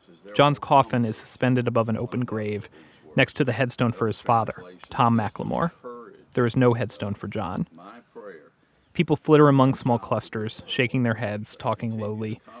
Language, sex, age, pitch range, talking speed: English, male, 30-49, 105-125 Hz, 155 wpm